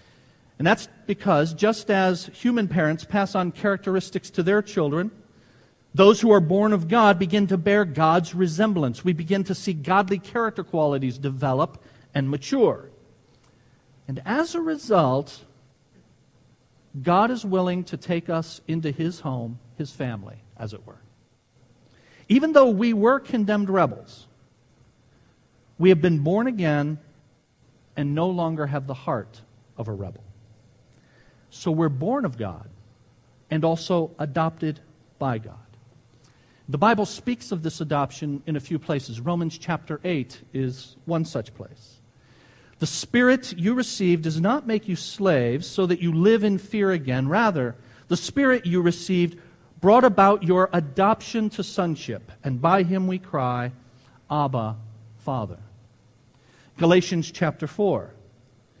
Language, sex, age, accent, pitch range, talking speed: English, male, 50-69, American, 125-190 Hz, 140 wpm